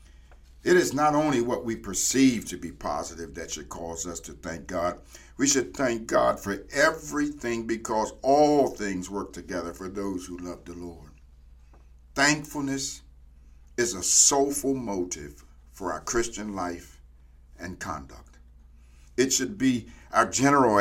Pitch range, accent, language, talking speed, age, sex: 70-115 Hz, American, English, 145 wpm, 50-69, male